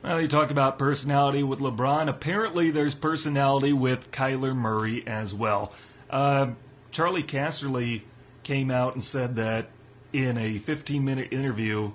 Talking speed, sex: 135 wpm, male